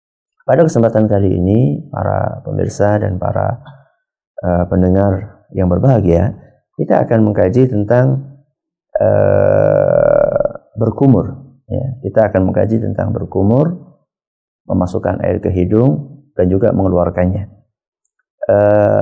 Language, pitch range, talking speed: Malay, 100-125 Hz, 100 wpm